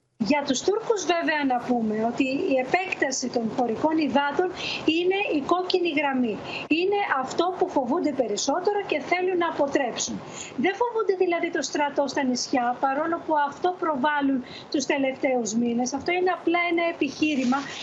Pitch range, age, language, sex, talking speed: 260-345 Hz, 20-39, Greek, female, 150 wpm